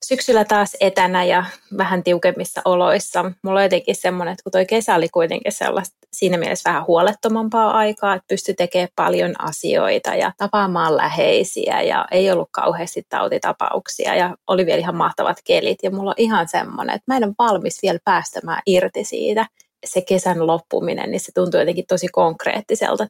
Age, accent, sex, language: 20-39, Finnish, female, English